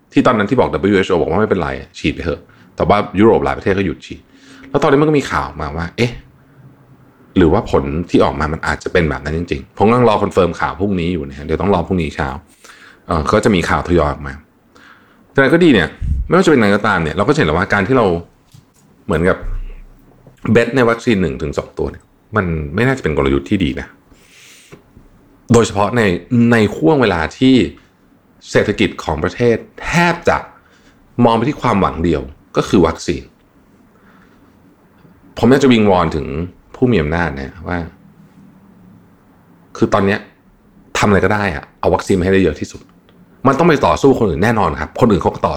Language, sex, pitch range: Thai, male, 85-115 Hz